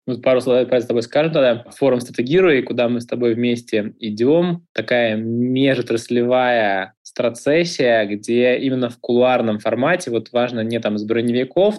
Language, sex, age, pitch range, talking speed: Russian, male, 20-39, 115-140 Hz, 155 wpm